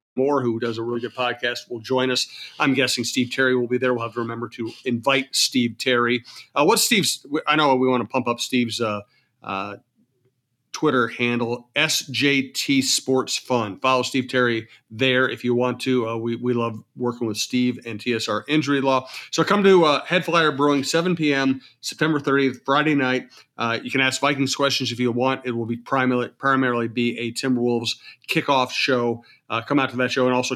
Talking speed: 200 wpm